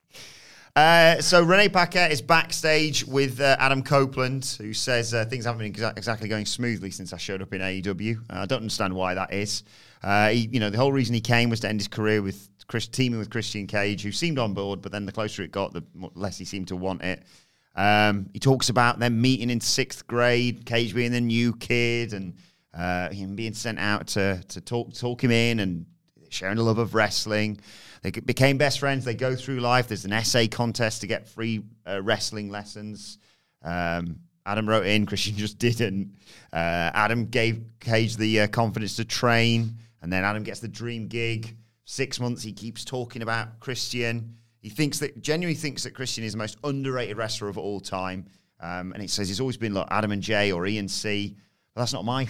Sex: male